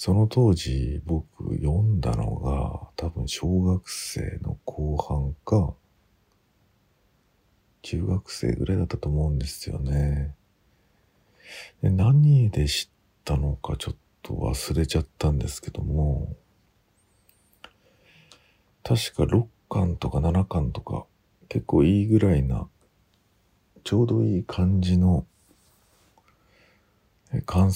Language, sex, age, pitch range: Japanese, male, 50-69, 75-100 Hz